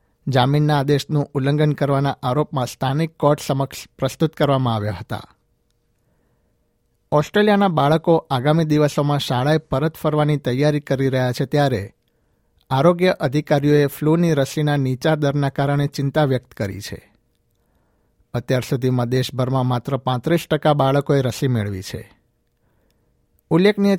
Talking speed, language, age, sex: 115 wpm, Gujarati, 60-79, male